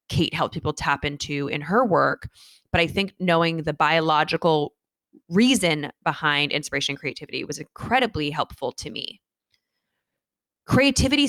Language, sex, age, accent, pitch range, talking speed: English, female, 20-39, American, 150-195 Hz, 135 wpm